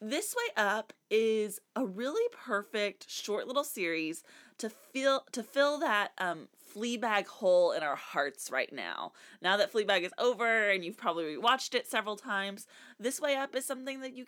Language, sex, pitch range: English, female, 180-270 Hz